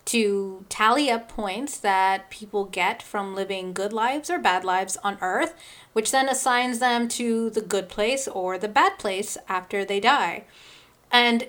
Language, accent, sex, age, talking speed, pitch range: English, American, female, 30-49, 165 wpm, 210-255 Hz